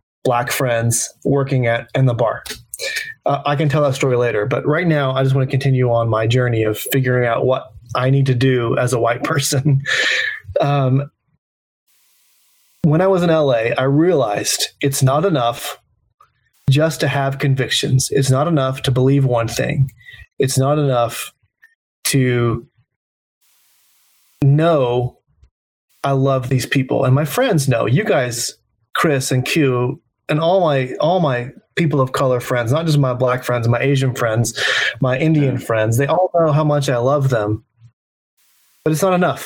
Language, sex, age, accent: English, male, 20-39, American